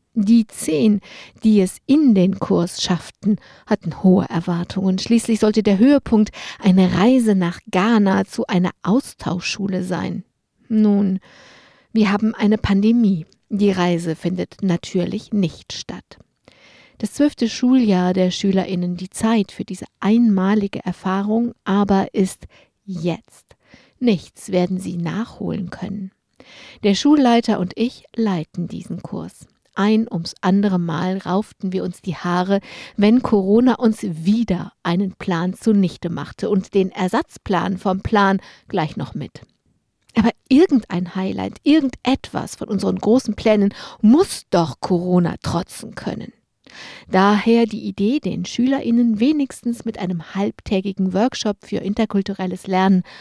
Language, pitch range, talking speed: German, 185-225 Hz, 125 wpm